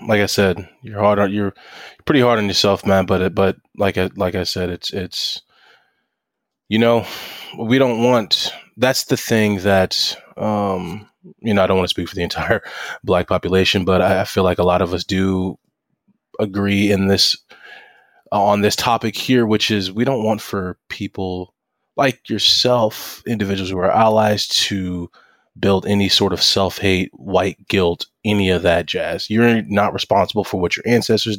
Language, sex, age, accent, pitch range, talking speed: English, male, 20-39, American, 90-105 Hz, 175 wpm